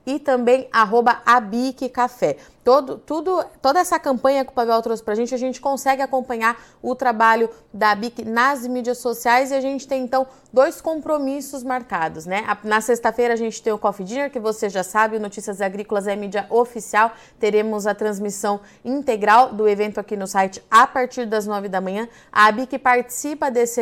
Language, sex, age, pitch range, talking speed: Portuguese, female, 20-39, 220-255 Hz, 185 wpm